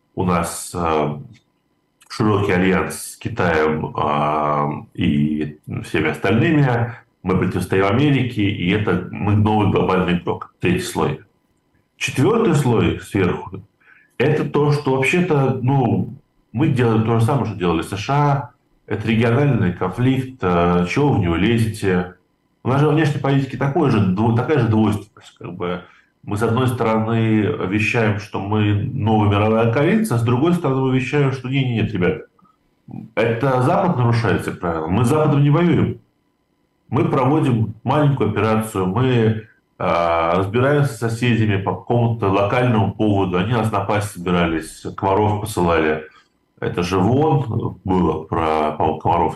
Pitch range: 95-130 Hz